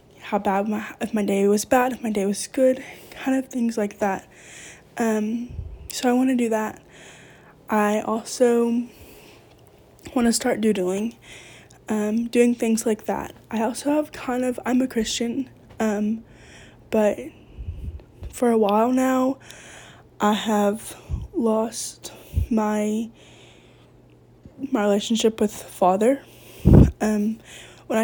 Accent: American